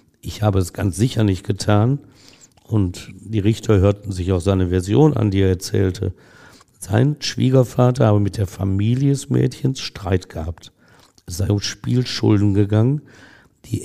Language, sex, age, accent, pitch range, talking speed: German, male, 60-79, German, 100-125 Hz, 150 wpm